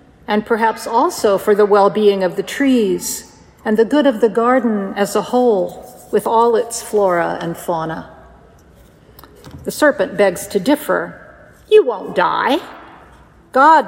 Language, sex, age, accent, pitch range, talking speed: English, female, 50-69, American, 200-260 Hz, 145 wpm